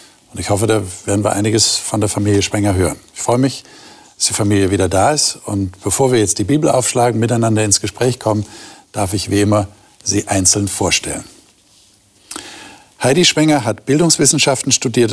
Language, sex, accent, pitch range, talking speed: German, male, German, 105-135 Hz, 170 wpm